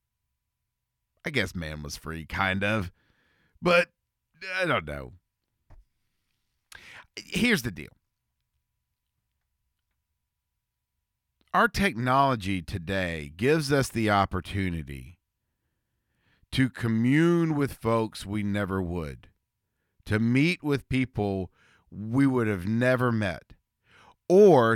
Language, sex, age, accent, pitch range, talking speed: English, male, 40-59, American, 95-140 Hz, 90 wpm